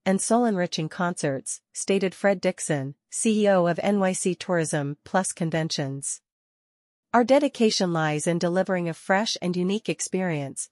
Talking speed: 130 wpm